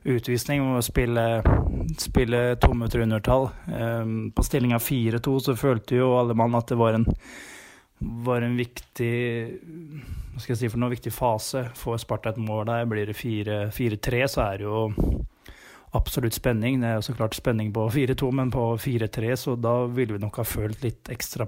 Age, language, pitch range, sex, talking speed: 20-39, English, 115-130 Hz, male, 165 wpm